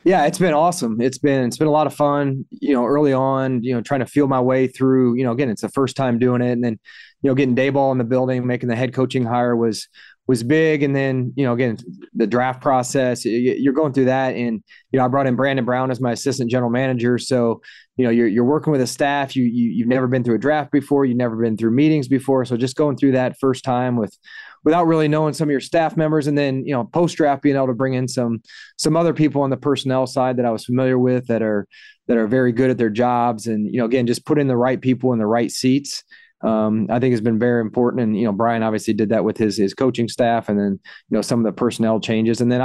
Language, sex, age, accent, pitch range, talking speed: English, male, 20-39, American, 115-135 Hz, 270 wpm